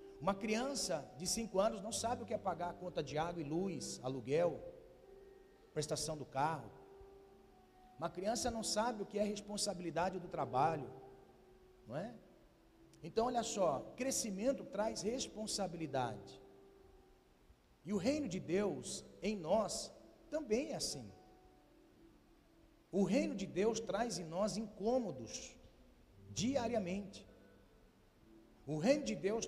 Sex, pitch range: male, 175-240 Hz